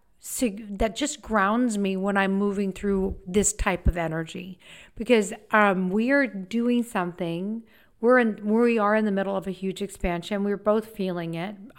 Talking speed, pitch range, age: 180 wpm, 190-220 Hz, 50-69